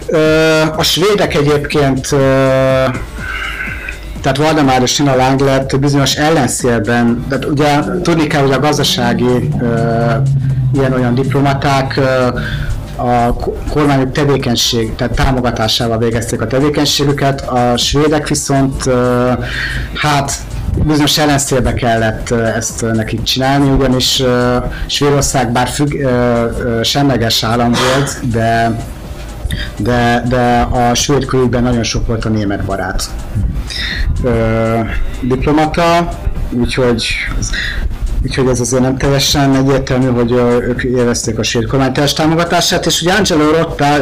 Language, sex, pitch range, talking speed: Hungarian, male, 115-140 Hz, 95 wpm